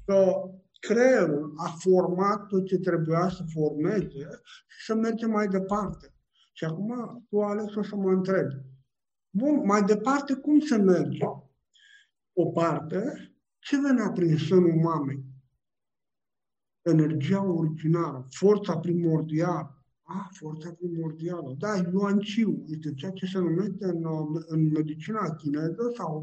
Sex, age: male, 50-69